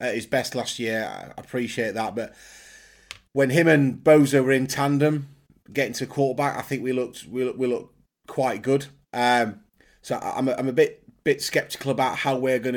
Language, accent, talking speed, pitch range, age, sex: English, British, 195 wpm, 125-145 Hz, 30-49, male